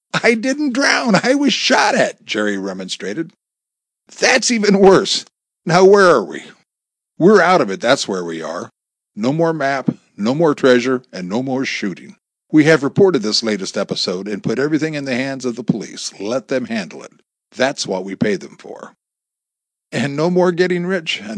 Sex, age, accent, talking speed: male, 50-69, American, 180 wpm